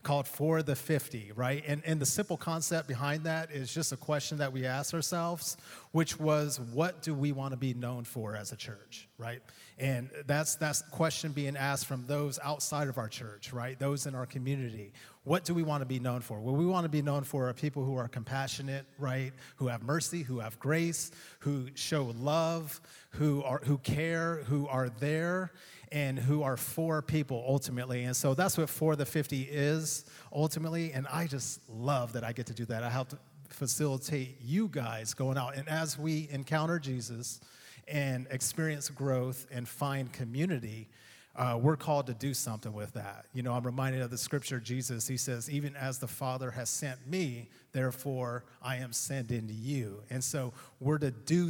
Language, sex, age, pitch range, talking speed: English, male, 30-49, 125-150 Hz, 195 wpm